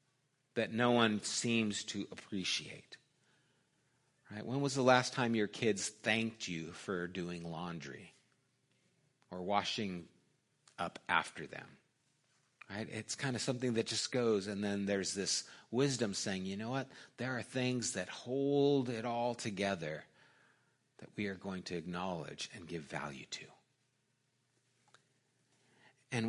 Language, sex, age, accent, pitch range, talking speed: English, male, 50-69, American, 105-130 Hz, 135 wpm